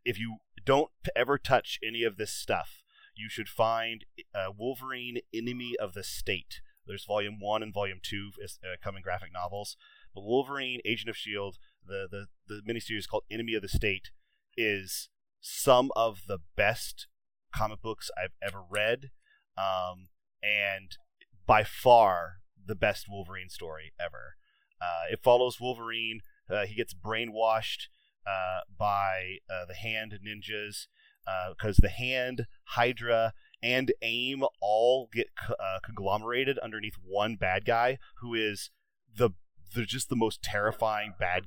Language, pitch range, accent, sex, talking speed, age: English, 95-115 Hz, American, male, 145 wpm, 30-49